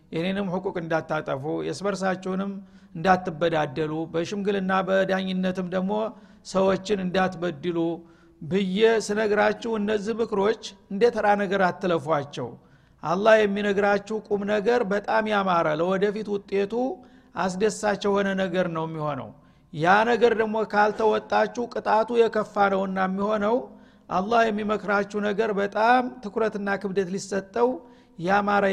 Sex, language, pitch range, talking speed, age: male, Amharic, 180-220 Hz, 90 wpm, 60-79